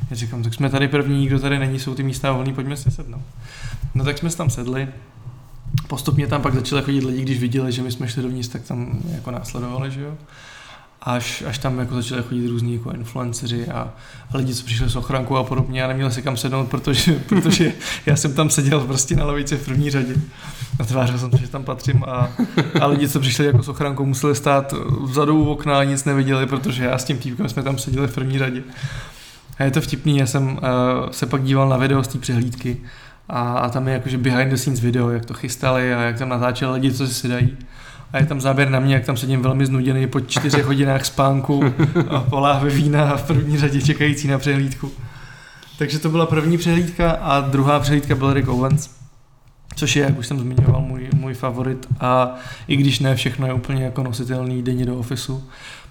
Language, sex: Czech, male